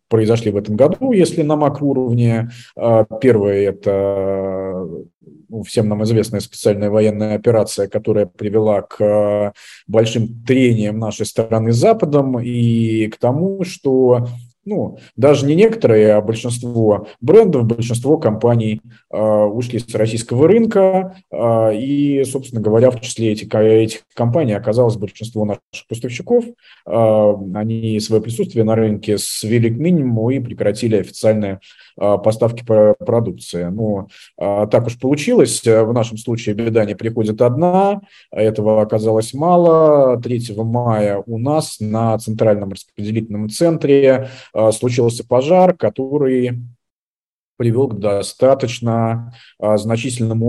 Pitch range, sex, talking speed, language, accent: 110-130 Hz, male, 115 wpm, Russian, native